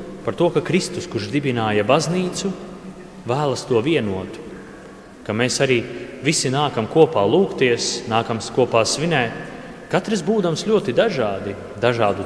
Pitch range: 115-155 Hz